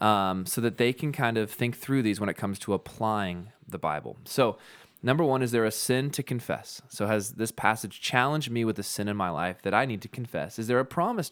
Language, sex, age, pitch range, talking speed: English, male, 20-39, 100-130 Hz, 250 wpm